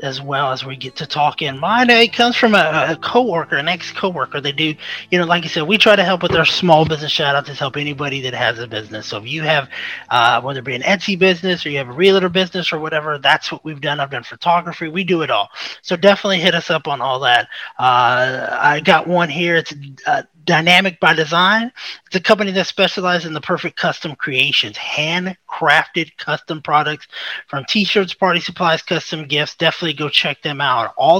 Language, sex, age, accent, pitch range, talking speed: English, male, 30-49, American, 145-180 Hz, 220 wpm